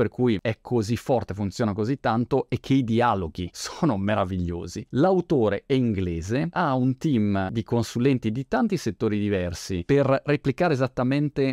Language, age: Italian, 30-49